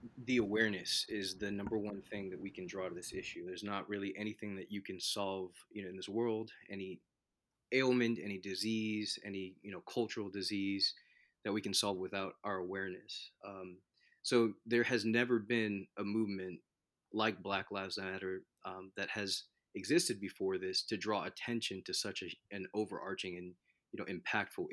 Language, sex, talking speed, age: English, male, 175 wpm, 20-39